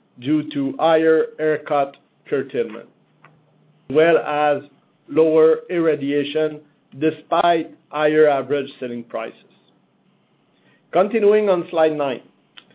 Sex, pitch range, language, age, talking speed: male, 145-175 Hz, English, 50-69, 95 wpm